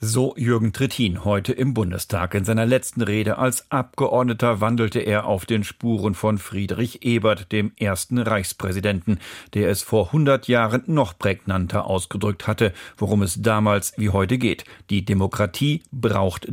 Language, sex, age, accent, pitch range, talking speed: German, male, 50-69, German, 100-125 Hz, 150 wpm